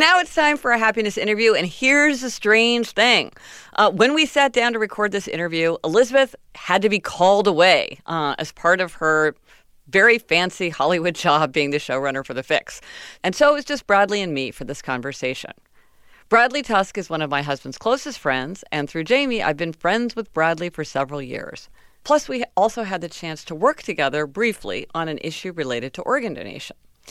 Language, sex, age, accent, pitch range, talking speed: English, female, 50-69, American, 150-225 Hz, 200 wpm